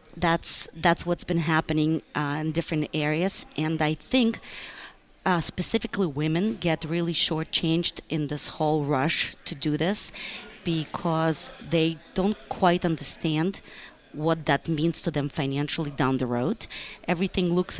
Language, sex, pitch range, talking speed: English, female, 140-165 Hz, 140 wpm